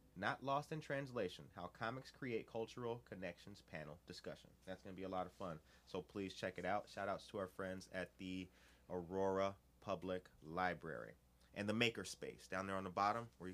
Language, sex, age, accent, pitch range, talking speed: English, male, 30-49, American, 80-105 Hz, 190 wpm